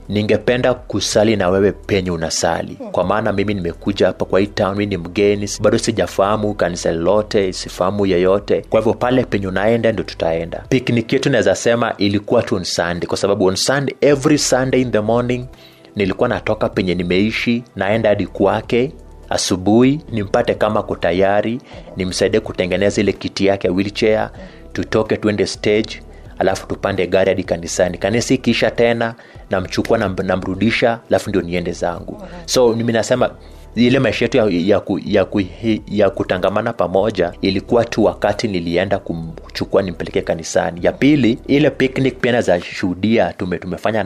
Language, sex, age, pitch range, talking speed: Swahili, male, 30-49, 95-115 Hz, 145 wpm